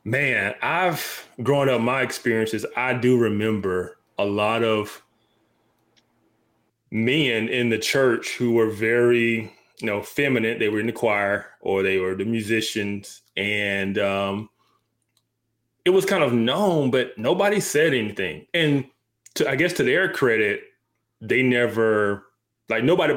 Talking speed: 135 wpm